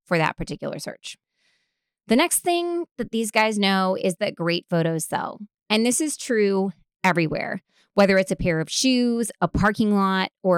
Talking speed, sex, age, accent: 175 wpm, female, 20-39, American